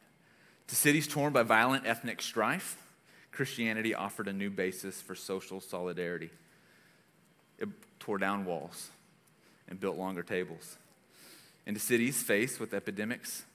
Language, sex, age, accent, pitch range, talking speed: English, male, 30-49, American, 95-110 Hz, 130 wpm